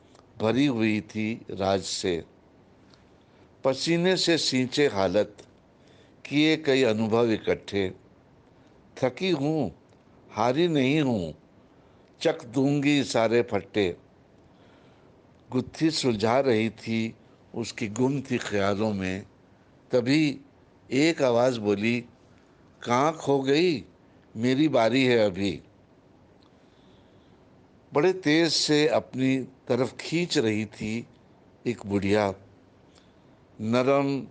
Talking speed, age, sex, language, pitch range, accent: 95 wpm, 60-79, male, Hindi, 105-135 Hz, native